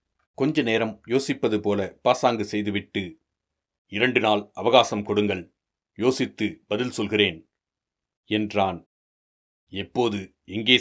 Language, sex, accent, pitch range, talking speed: Tamil, male, native, 100-115 Hz, 90 wpm